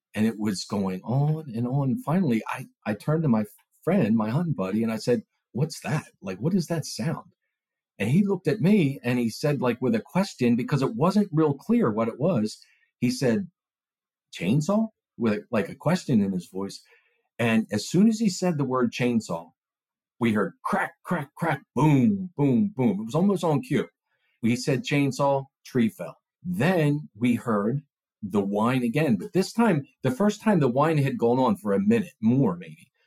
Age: 50-69